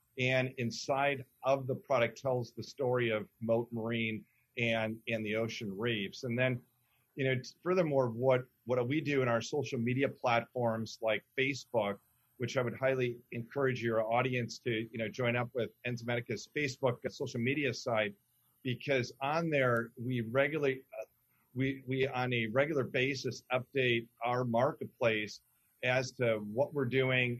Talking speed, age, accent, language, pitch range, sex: 155 wpm, 40-59, American, English, 115-135 Hz, male